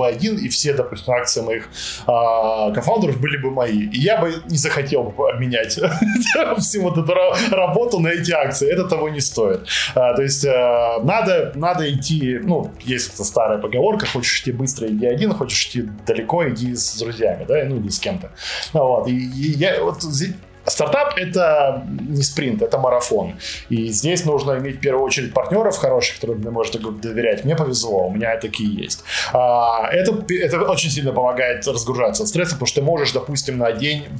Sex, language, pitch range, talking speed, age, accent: male, Russian, 120-165 Hz, 170 wpm, 20-39, native